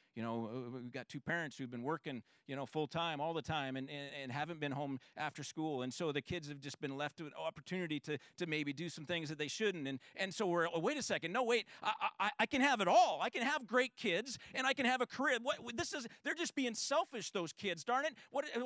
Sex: male